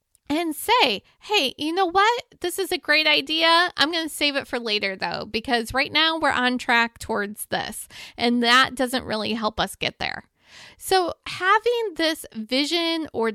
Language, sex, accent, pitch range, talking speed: English, female, American, 245-325 Hz, 180 wpm